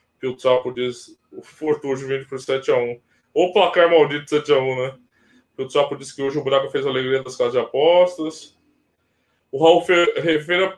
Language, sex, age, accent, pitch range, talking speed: Portuguese, male, 20-39, Brazilian, 175-235 Hz, 200 wpm